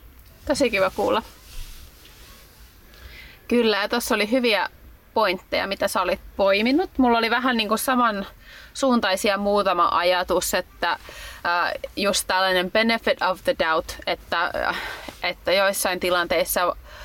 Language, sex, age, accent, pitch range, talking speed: Finnish, female, 20-39, native, 180-235 Hz, 115 wpm